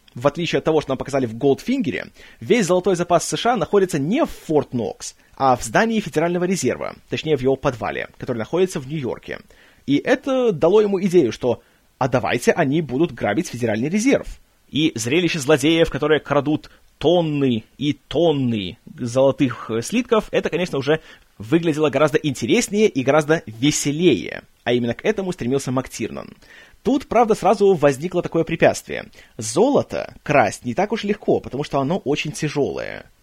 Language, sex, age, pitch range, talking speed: Russian, male, 30-49, 130-185 Hz, 155 wpm